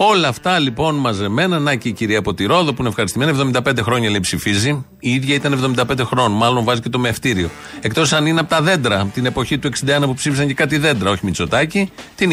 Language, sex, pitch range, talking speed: Greek, male, 115-145 Hz, 215 wpm